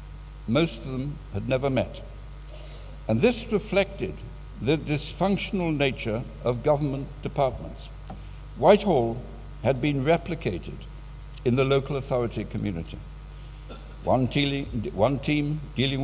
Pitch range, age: 120-150 Hz, 60-79